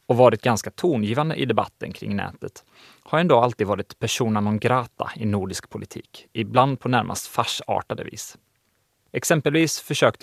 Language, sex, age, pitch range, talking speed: Swedish, male, 30-49, 105-130 Hz, 135 wpm